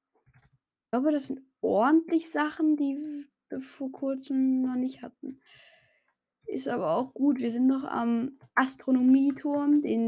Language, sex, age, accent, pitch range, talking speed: German, female, 20-39, German, 200-265 Hz, 135 wpm